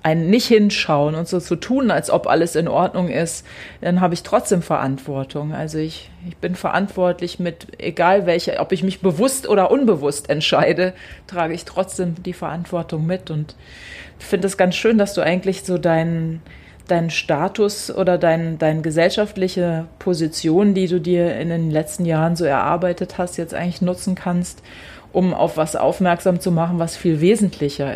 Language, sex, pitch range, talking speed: German, female, 165-190 Hz, 170 wpm